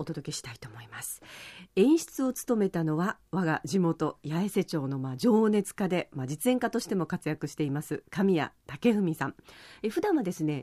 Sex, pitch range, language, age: female, 155-215 Hz, Japanese, 40-59